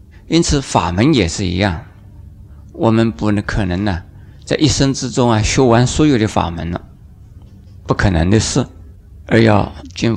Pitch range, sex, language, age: 85-120 Hz, male, Chinese, 50-69